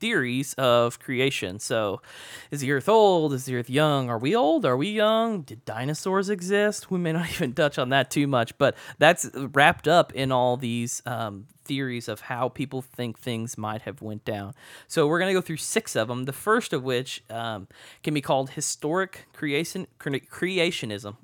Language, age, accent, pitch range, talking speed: English, 20-39, American, 120-155 Hz, 190 wpm